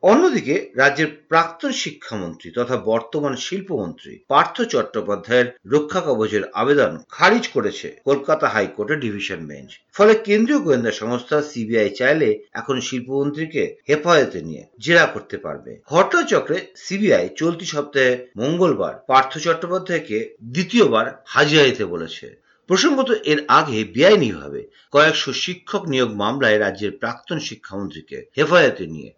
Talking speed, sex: 80 wpm, male